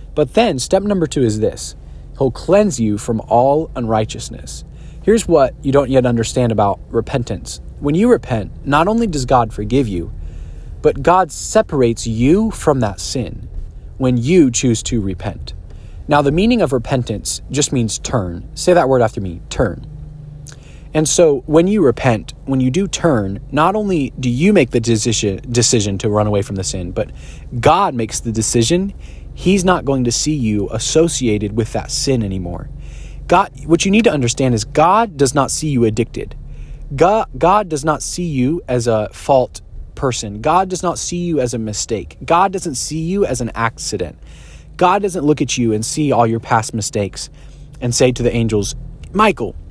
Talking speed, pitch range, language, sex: 180 wpm, 110-160 Hz, English, male